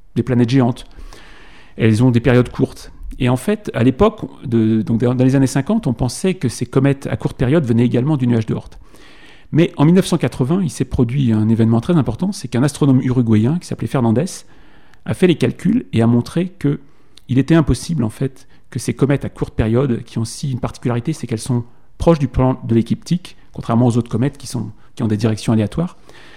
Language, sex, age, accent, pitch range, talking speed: French, male, 40-59, French, 120-150 Hz, 210 wpm